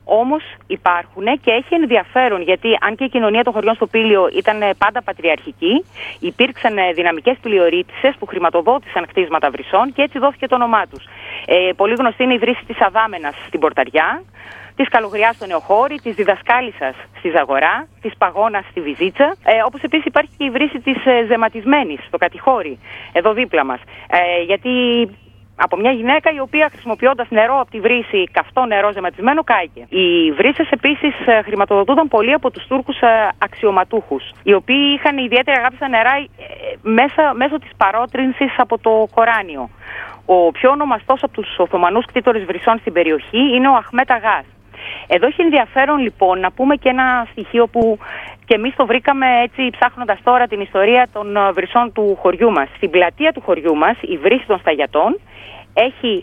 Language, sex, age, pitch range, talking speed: Greek, female, 30-49, 195-265 Hz, 165 wpm